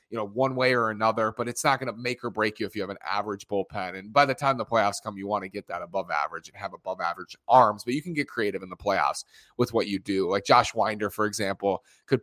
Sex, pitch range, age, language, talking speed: male, 105-145 Hz, 30-49, English, 285 wpm